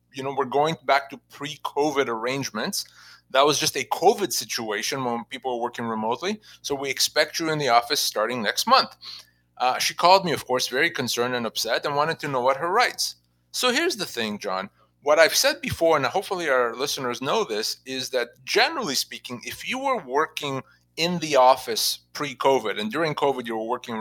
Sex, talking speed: male, 195 wpm